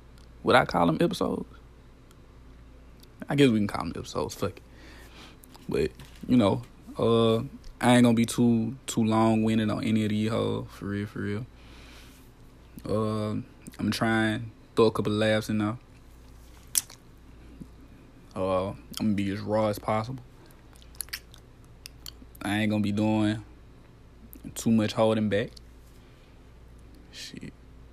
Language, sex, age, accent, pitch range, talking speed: English, male, 20-39, American, 80-115 Hz, 145 wpm